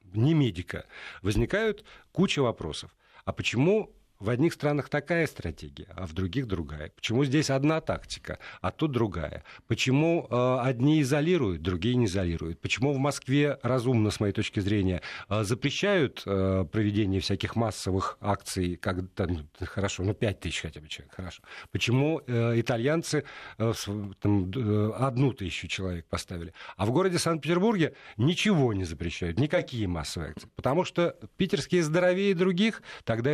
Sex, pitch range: male, 100-155 Hz